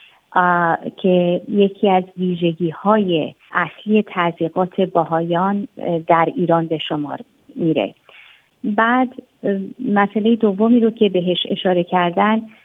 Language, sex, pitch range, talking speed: Persian, female, 175-205 Hz, 100 wpm